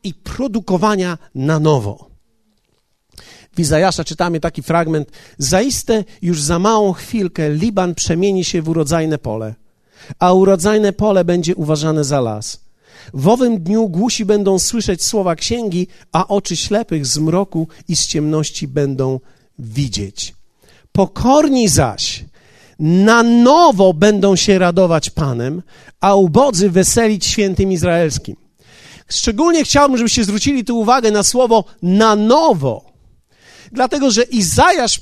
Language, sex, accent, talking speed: Polish, male, native, 120 wpm